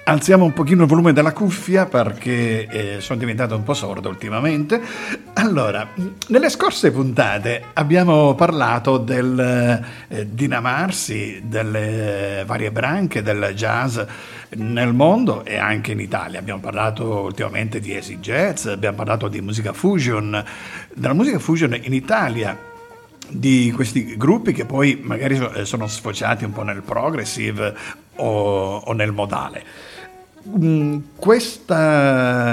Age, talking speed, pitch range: 50-69, 125 wpm, 110-155 Hz